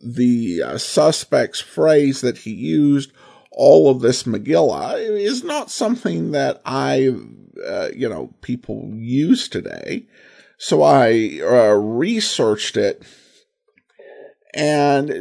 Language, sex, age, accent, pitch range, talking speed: English, male, 50-69, American, 120-185 Hz, 110 wpm